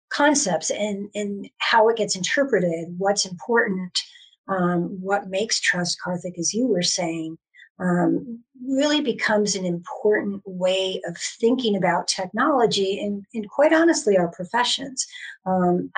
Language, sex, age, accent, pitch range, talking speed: English, female, 50-69, American, 185-220 Hz, 130 wpm